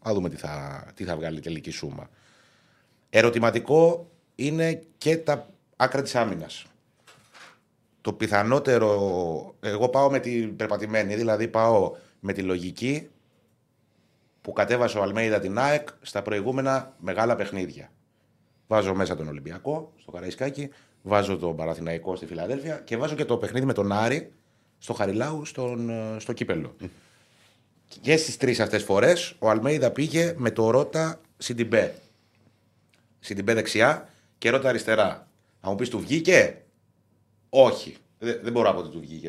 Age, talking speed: 30-49, 140 wpm